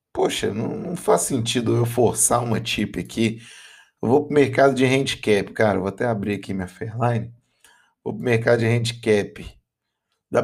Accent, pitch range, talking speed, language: Brazilian, 100-125 Hz, 165 wpm, Portuguese